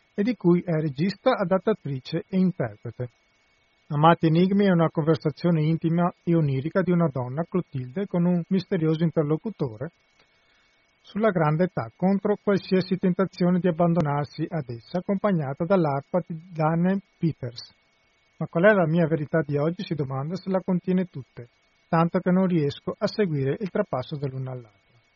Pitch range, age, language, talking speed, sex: 150-190 Hz, 40-59, Italian, 150 wpm, male